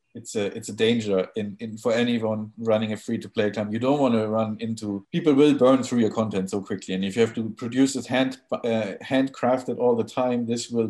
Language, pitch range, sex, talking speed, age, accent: English, 115-145 Hz, male, 230 wpm, 50-69, German